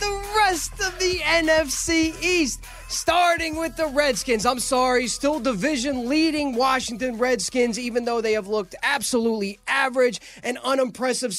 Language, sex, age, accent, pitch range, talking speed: English, male, 20-39, American, 225-285 Hz, 135 wpm